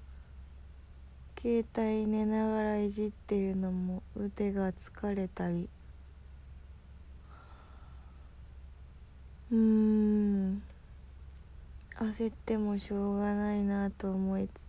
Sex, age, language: female, 20-39, Japanese